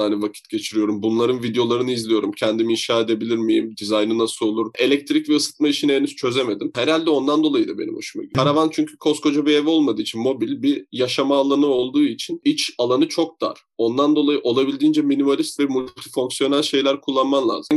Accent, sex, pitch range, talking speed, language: native, male, 130-160 Hz, 180 wpm, Turkish